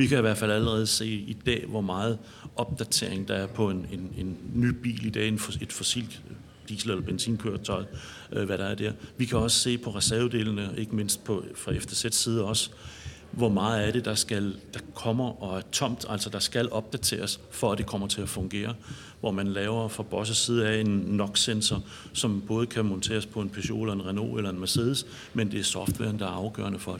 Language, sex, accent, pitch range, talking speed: Danish, male, native, 105-120 Hz, 215 wpm